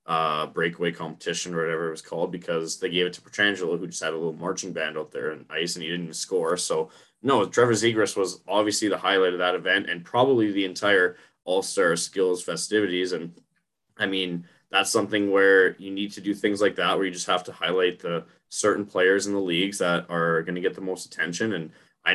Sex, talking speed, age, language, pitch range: male, 225 wpm, 20-39, English, 90-105 Hz